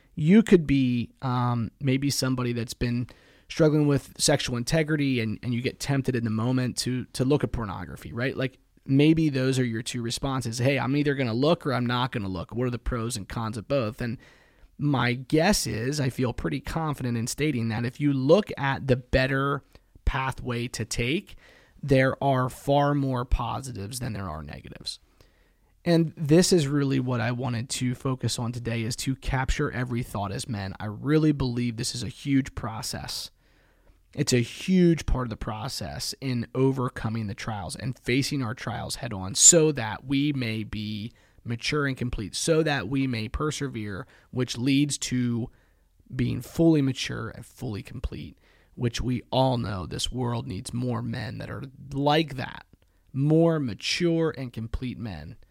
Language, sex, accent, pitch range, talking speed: English, male, American, 115-140 Hz, 180 wpm